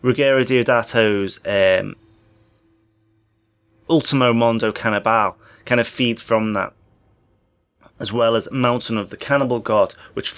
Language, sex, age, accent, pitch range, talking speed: English, male, 30-49, British, 105-120 Hz, 115 wpm